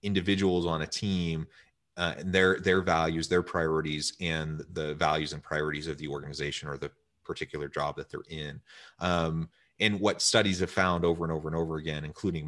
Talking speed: 190 wpm